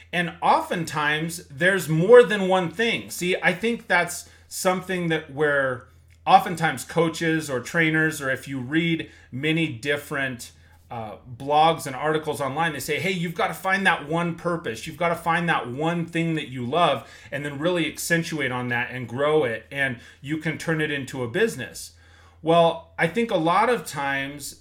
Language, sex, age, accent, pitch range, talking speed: English, male, 30-49, American, 130-170 Hz, 180 wpm